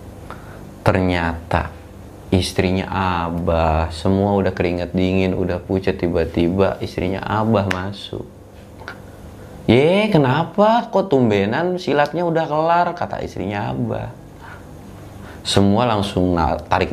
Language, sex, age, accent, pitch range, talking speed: Indonesian, male, 30-49, native, 90-125 Hz, 90 wpm